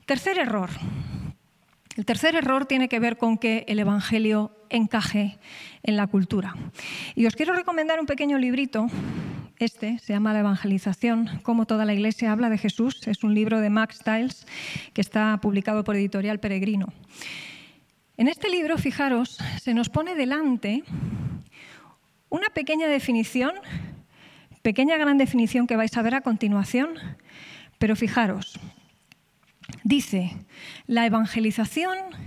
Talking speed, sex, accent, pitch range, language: 135 wpm, female, Spanish, 210-265 Hz, English